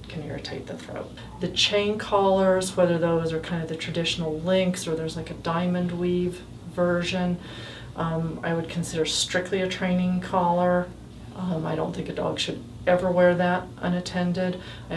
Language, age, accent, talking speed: English, 40-59, American, 170 wpm